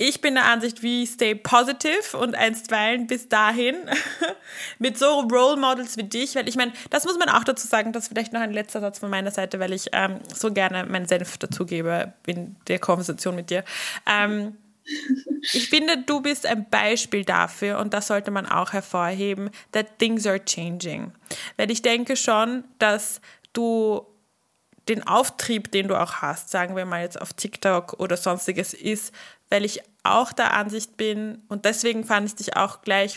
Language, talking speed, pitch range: German, 180 wpm, 200-250 Hz